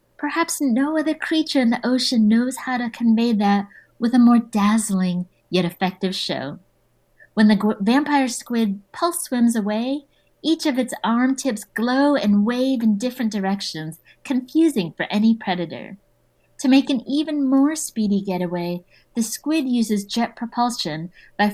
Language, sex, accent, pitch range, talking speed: English, female, American, 200-250 Hz, 150 wpm